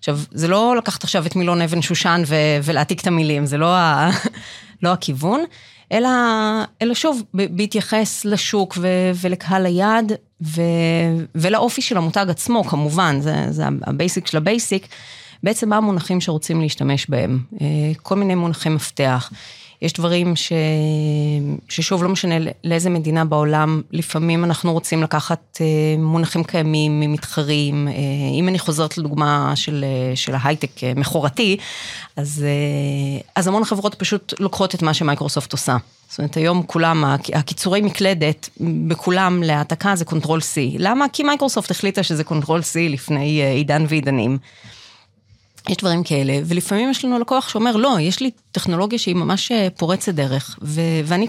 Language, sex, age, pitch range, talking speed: Hebrew, female, 30-49, 150-195 Hz, 140 wpm